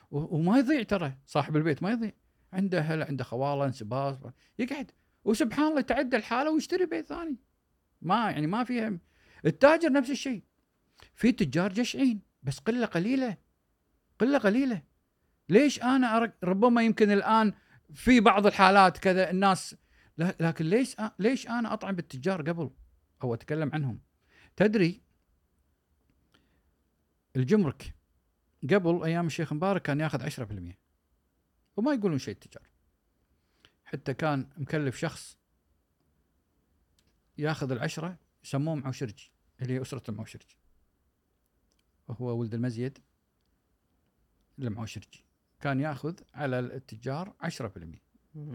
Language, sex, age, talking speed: Arabic, male, 50-69, 110 wpm